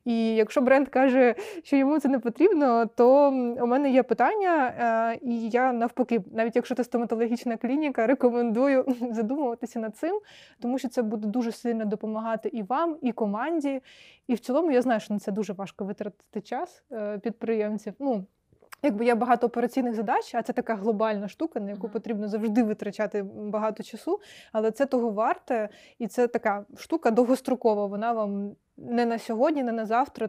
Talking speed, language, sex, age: 165 wpm, Ukrainian, female, 20-39